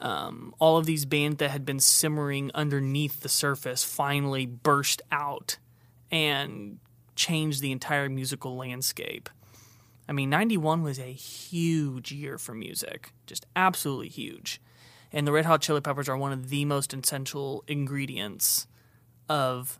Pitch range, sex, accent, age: 125-160 Hz, male, American, 20-39